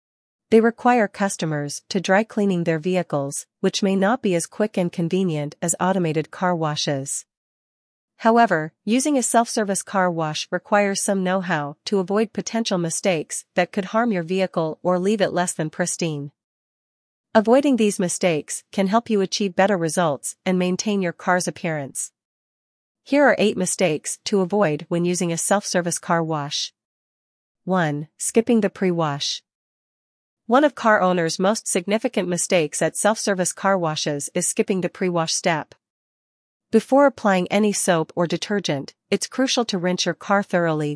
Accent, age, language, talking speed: American, 40-59, English, 150 wpm